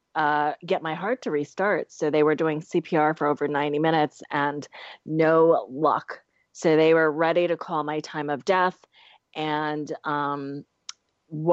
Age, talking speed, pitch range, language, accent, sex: 30-49, 155 wpm, 145-165 Hz, English, American, female